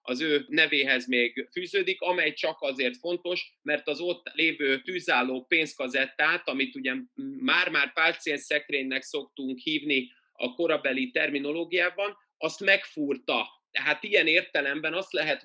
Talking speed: 125 wpm